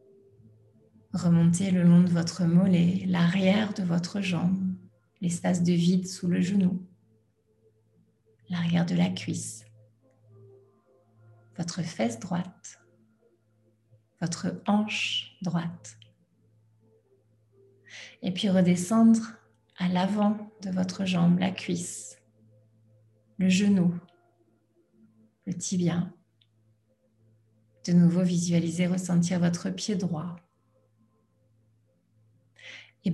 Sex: female